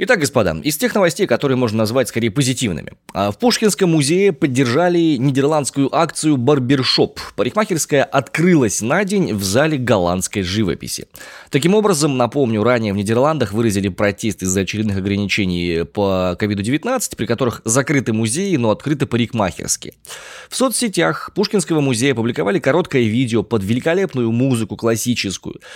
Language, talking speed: Russian, 135 wpm